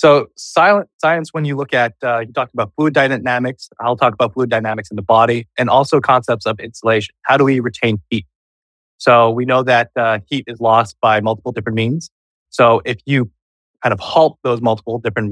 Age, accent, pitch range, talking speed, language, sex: 20-39, American, 110-130 Hz, 200 wpm, English, male